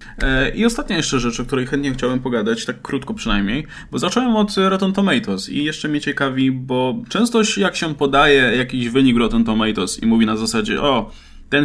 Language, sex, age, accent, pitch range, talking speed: Polish, male, 20-39, native, 115-180 Hz, 185 wpm